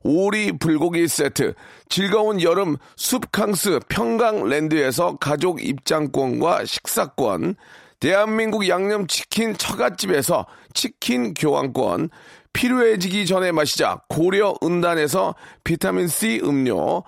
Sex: male